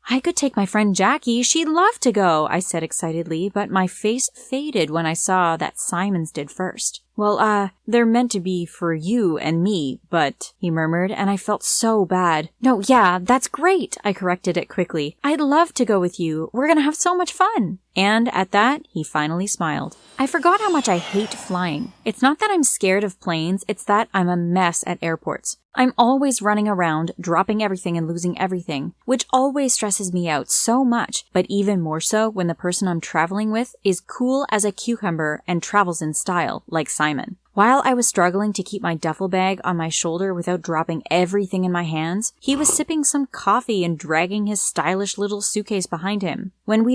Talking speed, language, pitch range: 205 wpm, English, 175-230 Hz